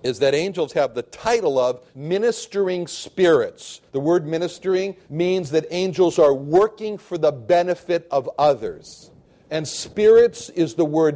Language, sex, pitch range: English, male, 140-190 Hz